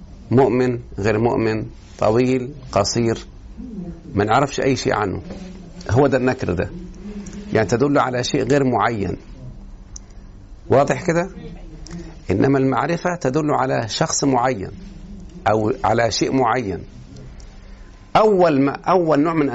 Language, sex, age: Arabic, male, 50-69